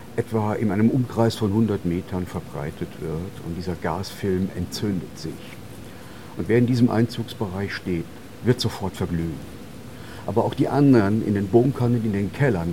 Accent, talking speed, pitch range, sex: German, 160 wpm, 95-120 Hz, male